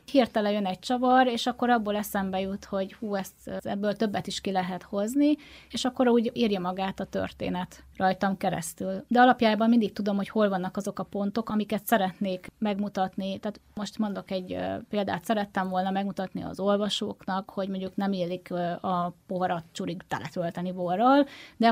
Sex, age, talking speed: female, 30-49, 165 wpm